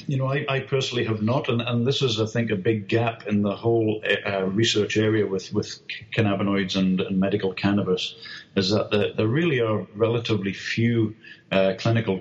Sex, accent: male, British